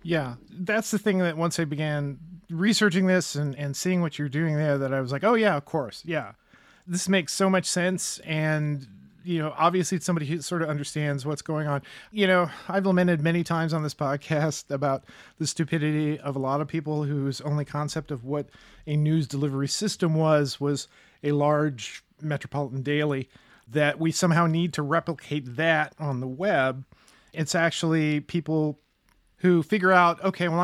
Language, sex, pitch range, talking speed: English, male, 145-175 Hz, 185 wpm